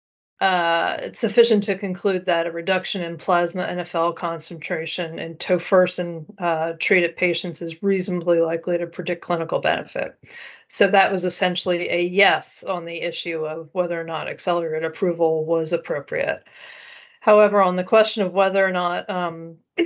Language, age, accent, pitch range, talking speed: English, 40-59, American, 170-195 Hz, 150 wpm